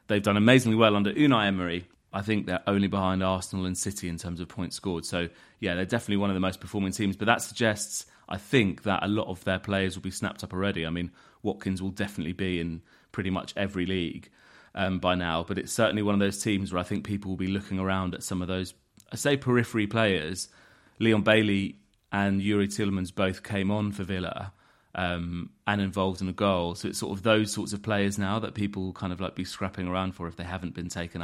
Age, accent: 30-49, British